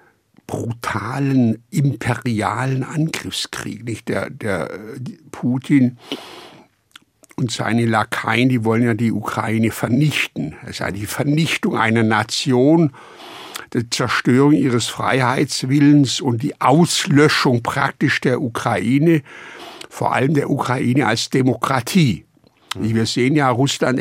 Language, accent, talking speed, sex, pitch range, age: German, German, 110 wpm, male, 115-135 Hz, 60-79